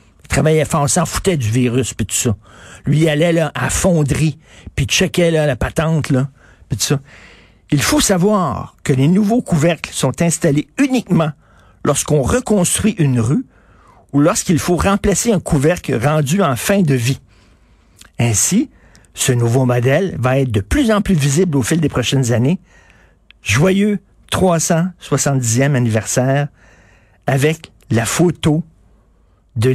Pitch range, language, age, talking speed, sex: 115-165 Hz, French, 50-69, 145 wpm, male